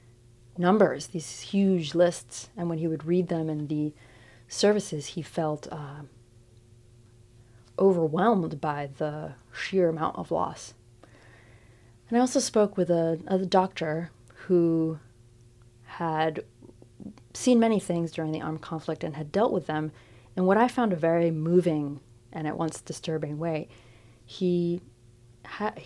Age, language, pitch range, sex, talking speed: 30-49, English, 120-175 Hz, female, 135 wpm